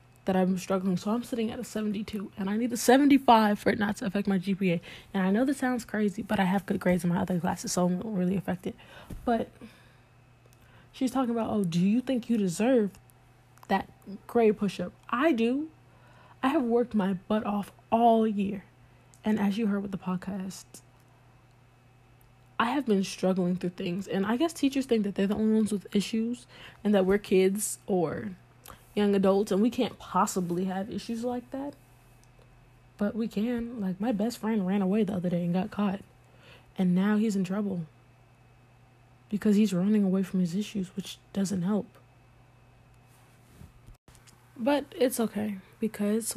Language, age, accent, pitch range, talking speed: English, 10-29, American, 175-220 Hz, 180 wpm